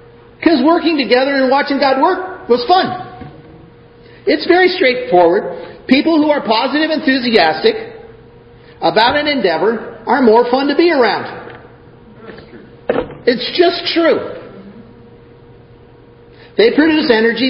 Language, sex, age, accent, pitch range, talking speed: English, male, 50-69, American, 165-265 Hz, 110 wpm